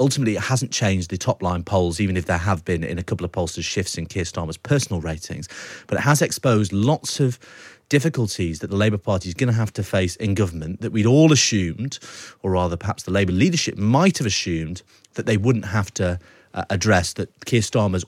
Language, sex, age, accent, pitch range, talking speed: English, male, 30-49, British, 90-120 Hz, 210 wpm